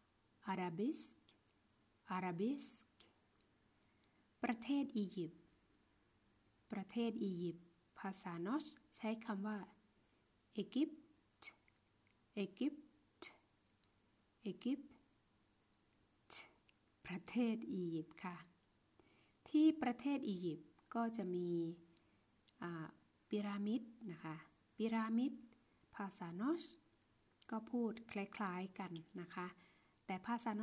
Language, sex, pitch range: Thai, female, 170-225 Hz